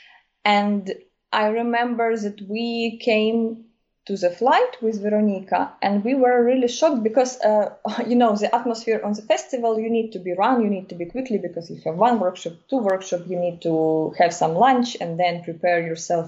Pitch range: 195-255 Hz